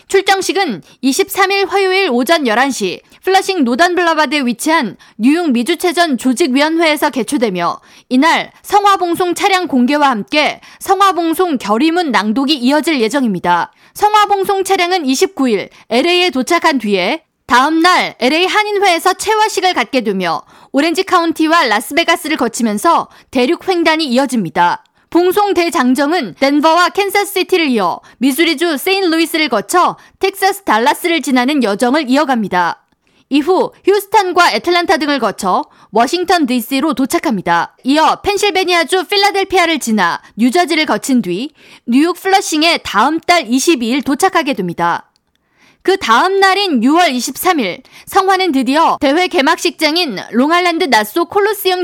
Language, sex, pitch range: Korean, female, 260-365 Hz